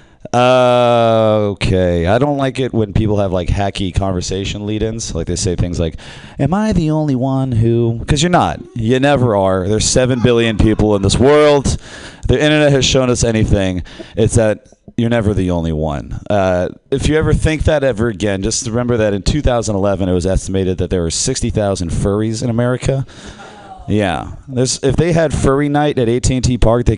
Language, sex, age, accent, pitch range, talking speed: English, male, 30-49, American, 100-125 Hz, 190 wpm